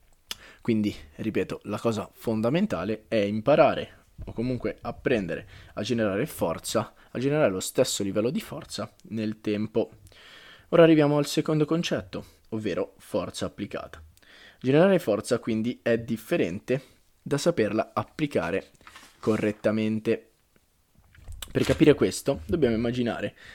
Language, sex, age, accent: Italian, male, 20-39, native